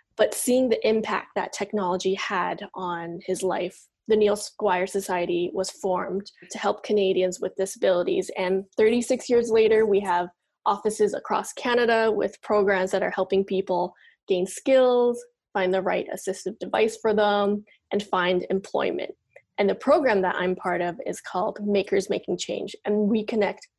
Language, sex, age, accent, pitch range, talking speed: English, female, 10-29, American, 190-220 Hz, 160 wpm